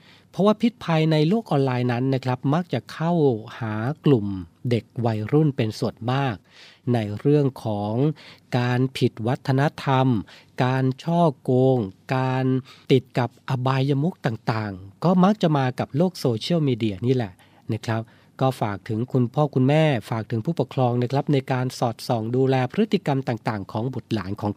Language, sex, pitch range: Thai, male, 115-140 Hz